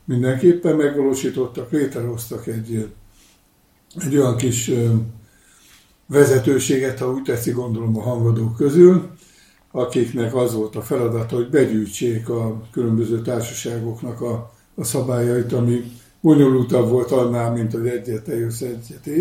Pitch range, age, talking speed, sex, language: 115-130 Hz, 60-79, 110 wpm, male, Hungarian